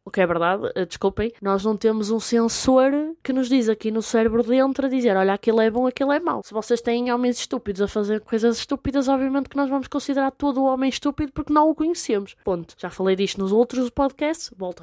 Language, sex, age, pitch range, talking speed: Portuguese, female, 20-39, 190-260 Hz, 225 wpm